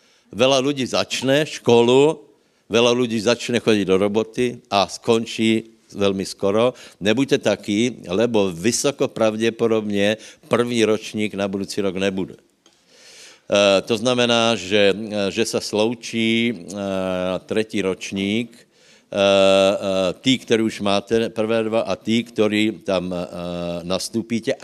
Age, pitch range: 60-79, 95-115 Hz